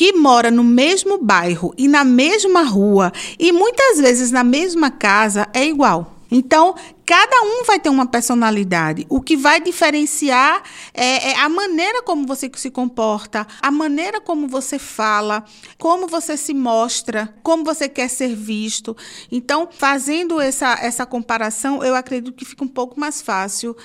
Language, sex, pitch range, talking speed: Portuguese, female, 225-310 Hz, 155 wpm